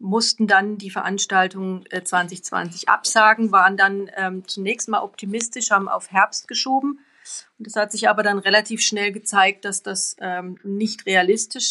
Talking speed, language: 155 wpm, German